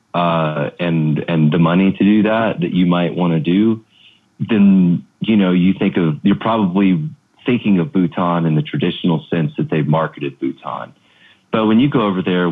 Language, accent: English, American